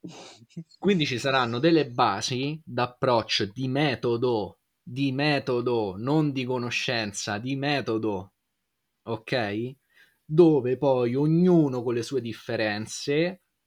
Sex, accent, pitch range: male, native, 110-145 Hz